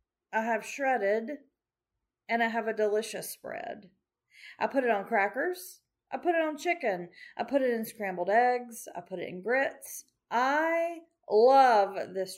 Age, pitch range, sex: 40-59, 210-275 Hz, female